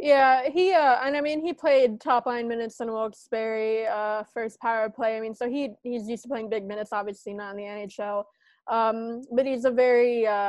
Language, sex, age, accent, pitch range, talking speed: English, female, 20-39, American, 220-250 Hz, 215 wpm